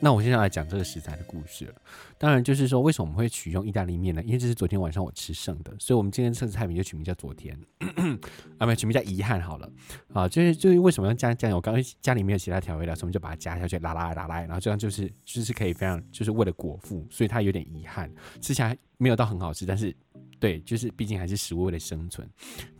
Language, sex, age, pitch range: Chinese, male, 20-39, 85-125 Hz